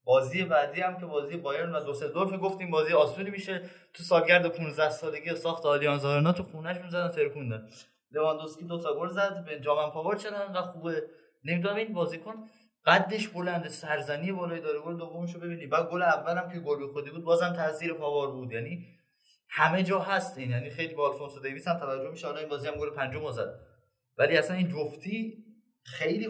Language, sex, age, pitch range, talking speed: Persian, male, 20-39, 135-180 Hz, 185 wpm